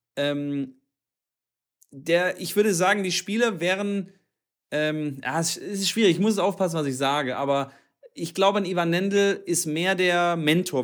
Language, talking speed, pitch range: German, 160 wpm, 135-175 Hz